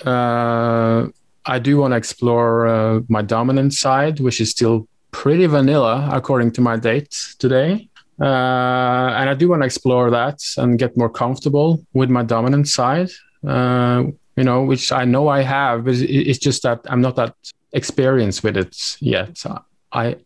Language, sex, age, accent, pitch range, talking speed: English, male, 20-39, Norwegian, 115-135 Hz, 165 wpm